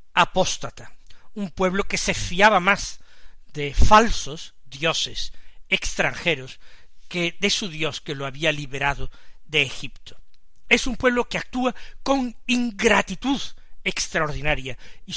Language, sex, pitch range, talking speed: Spanish, male, 150-215 Hz, 120 wpm